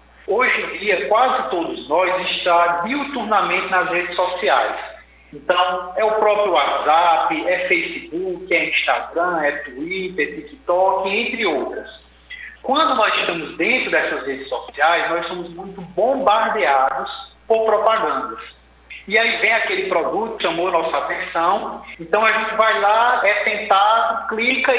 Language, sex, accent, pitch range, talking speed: Portuguese, male, Brazilian, 160-225 Hz, 135 wpm